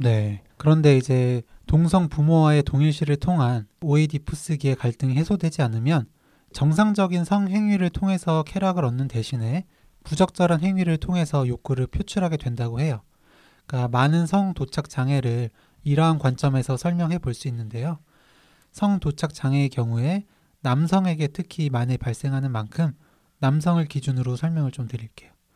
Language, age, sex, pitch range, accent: Korean, 20-39, male, 130-165 Hz, native